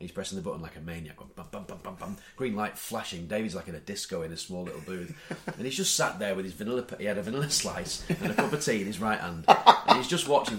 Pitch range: 90-145 Hz